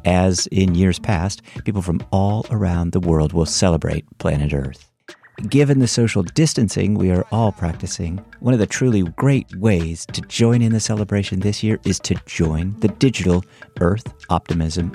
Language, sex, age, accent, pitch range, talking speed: English, male, 50-69, American, 85-115 Hz, 170 wpm